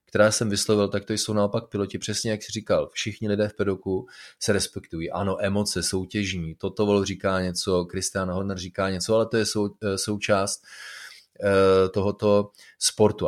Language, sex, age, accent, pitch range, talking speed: Czech, male, 30-49, native, 100-115 Hz, 170 wpm